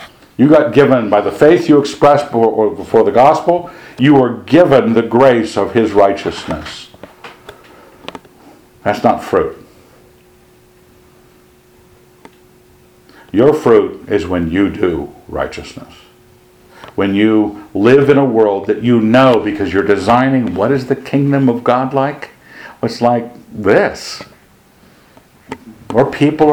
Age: 60-79